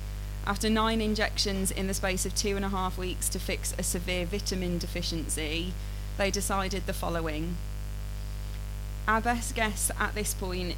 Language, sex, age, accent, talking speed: English, female, 20-39, British, 155 wpm